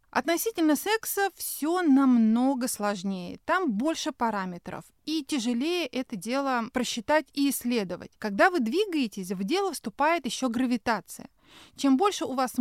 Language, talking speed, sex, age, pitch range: Russian, 130 wpm, female, 30-49, 225-310 Hz